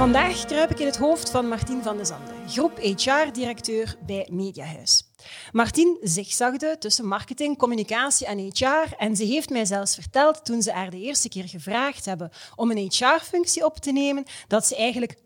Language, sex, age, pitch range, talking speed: Dutch, female, 30-49, 195-265 Hz, 175 wpm